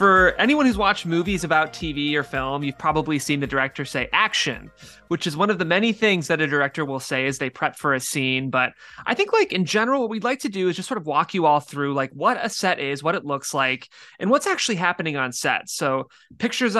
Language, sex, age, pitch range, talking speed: English, male, 20-39, 140-205 Hz, 250 wpm